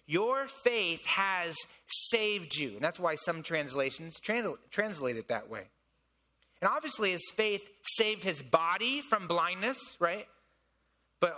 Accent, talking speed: American, 130 wpm